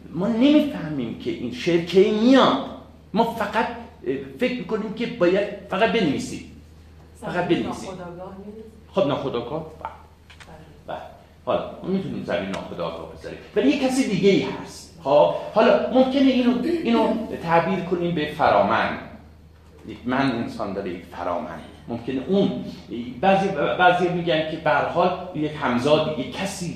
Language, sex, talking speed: Persian, male, 135 wpm